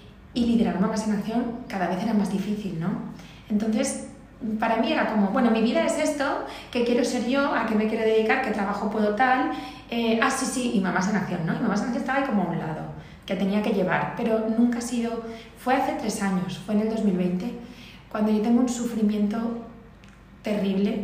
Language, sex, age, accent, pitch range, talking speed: Spanish, female, 20-39, Spanish, 190-230 Hz, 215 wpm